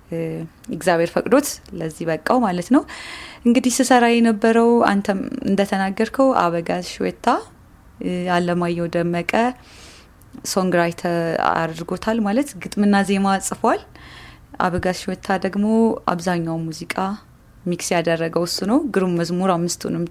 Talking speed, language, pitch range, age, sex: 100 wpm, Amharic, 175-225 Hz, 20-39, female